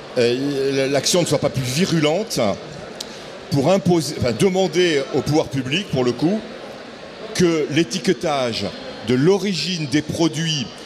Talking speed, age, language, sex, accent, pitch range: 120 wpm, 40-59, French, male, French, 135-190 Hz